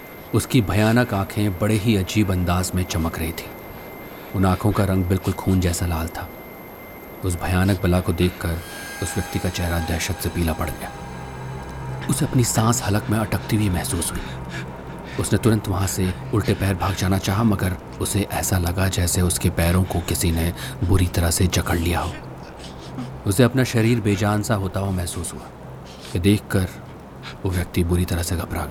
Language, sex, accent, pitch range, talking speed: Hindi, male, native, 90-105 Hz, 175 wpm